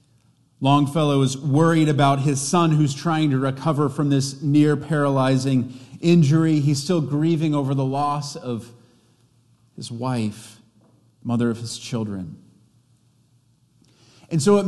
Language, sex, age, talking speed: English, male, 40-59, 125 wpm